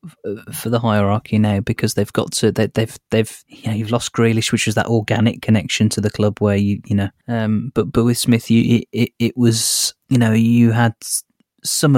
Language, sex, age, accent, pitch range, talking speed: English, male, 20-39, British, 105-125 Hz, 210 wpm